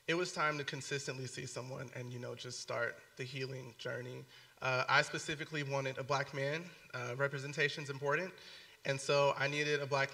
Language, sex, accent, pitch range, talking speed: English, male, American, 130-150 Hz, 185 wpm